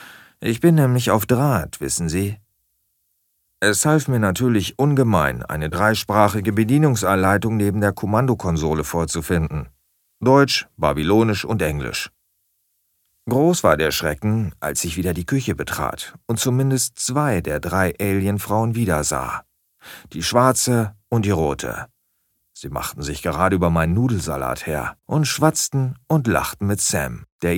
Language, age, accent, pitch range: German, 40-59, German, 85-125 Hz